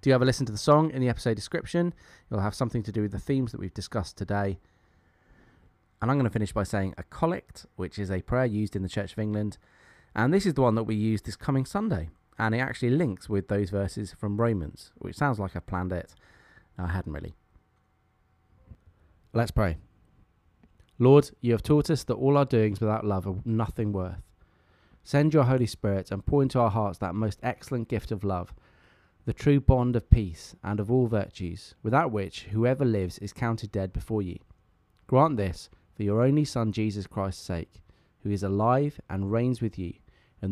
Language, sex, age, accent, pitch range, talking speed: English, male, 20-39, British, 90-120 Hz, 205 wpm